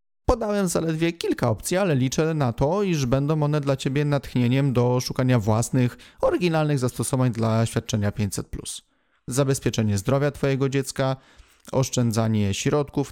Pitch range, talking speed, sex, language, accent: 115-145 Hz, 130 wpm, male, Polish, native